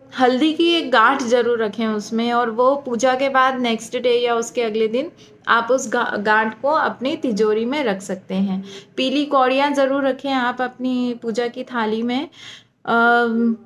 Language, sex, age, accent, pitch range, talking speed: Hindi, female, 20-39, native, 225-265 Hz, 170 wpm